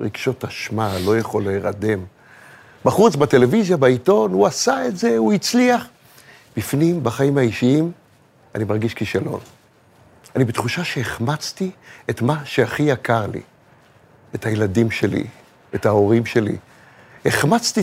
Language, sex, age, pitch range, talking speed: Hebrew, male, 60-79, 115-160 Hz, 120 wpm